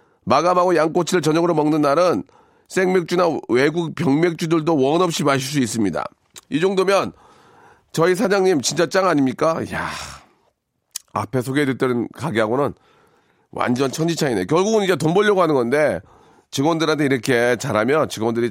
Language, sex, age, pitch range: Korean, male, 40-59, 140-185 Hz